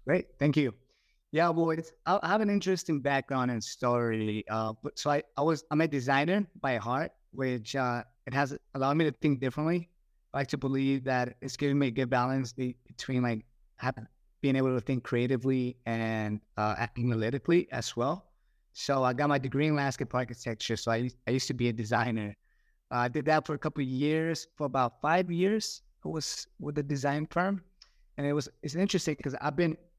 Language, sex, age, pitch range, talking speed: English, male, 30-49, 115-145 Hz, 200 wpm